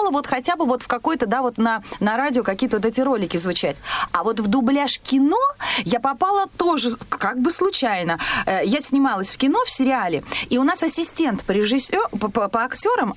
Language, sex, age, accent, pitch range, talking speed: Russian, female, 30-49, native, 205-270 Hz, 195 wpm